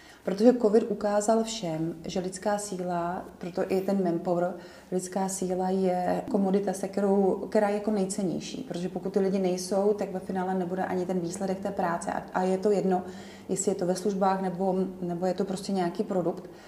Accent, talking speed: native, 180 wpm